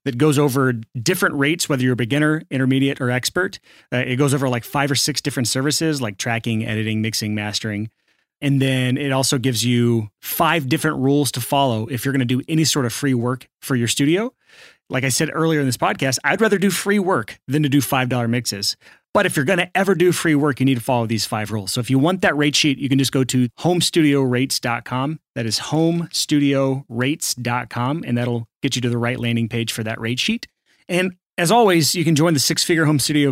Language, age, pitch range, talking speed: English, 30-49, 125-160 Hz, 220 wpm